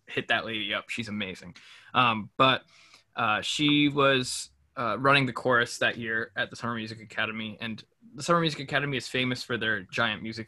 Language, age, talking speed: English, 20-39, 190 wpm